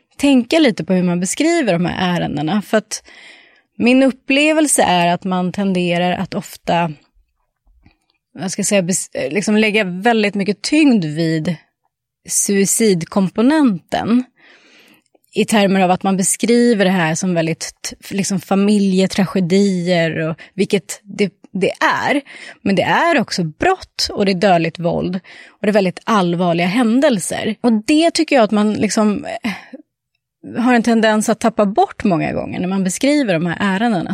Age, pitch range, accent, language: 30-49, 180-230 Hz, Swedish, English